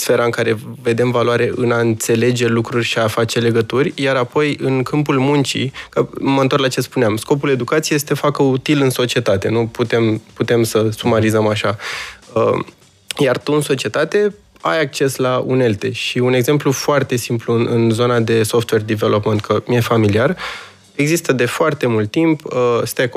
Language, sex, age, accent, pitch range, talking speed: Romanian, male, 20-39, native, 115-140 Hz, 170 wpm